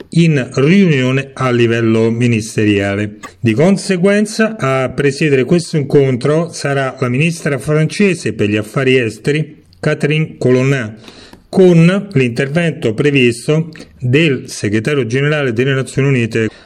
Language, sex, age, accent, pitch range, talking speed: Italian, male, 40-59, native, 115-150 Hz, 110 wpm